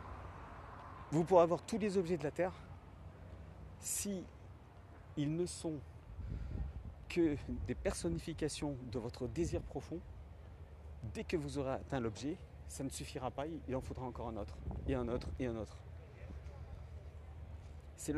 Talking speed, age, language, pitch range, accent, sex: 140 wpm, 40-59, French, 80-135 Hz, French, male